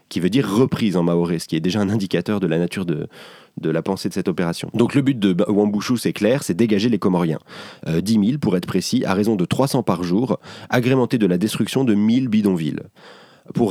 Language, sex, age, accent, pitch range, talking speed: French, male, 30-49, French, 95-110 Hz, 230 wpm